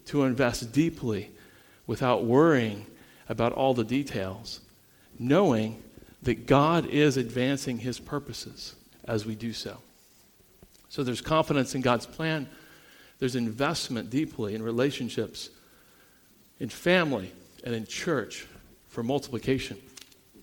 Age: 50-69